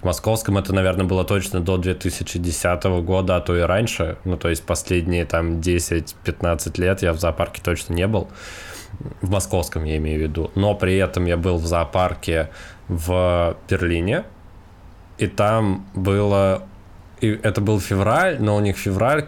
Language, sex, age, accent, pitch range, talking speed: Russian, male, 20-39, native, 90-100 Hz, 160 wpm